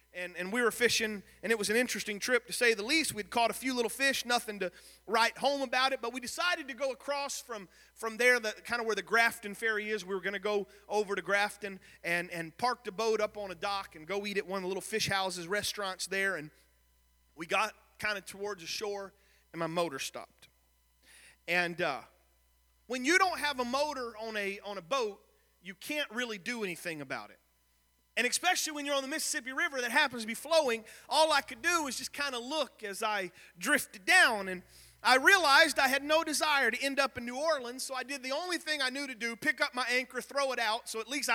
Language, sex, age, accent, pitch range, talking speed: English, male, 40-59, American, 180-255 Hz, 240 wpm